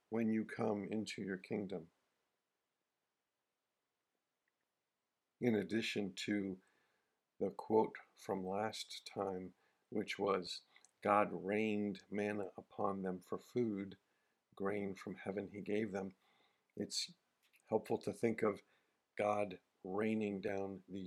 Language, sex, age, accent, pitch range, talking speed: English, male, 50-69, American, 100-115 Hz, 110 wpm